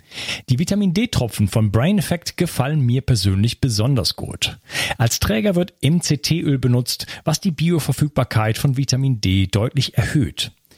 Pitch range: 115-155 Hz